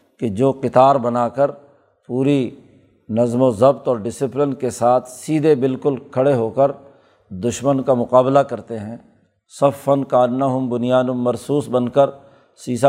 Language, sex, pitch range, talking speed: Urdu, male, 120-140 Hz, 145 wpm